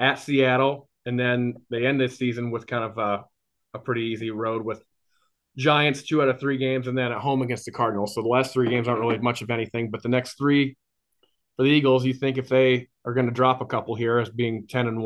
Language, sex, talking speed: English, male, 245 wpm